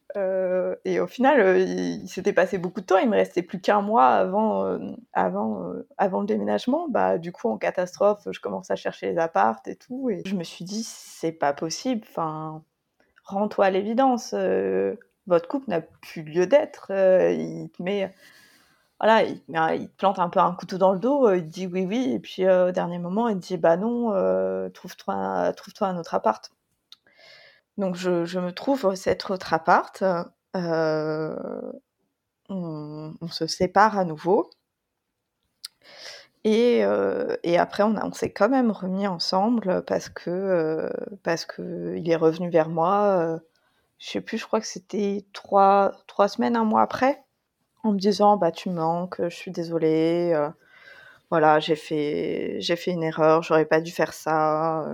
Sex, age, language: female, 20-39, French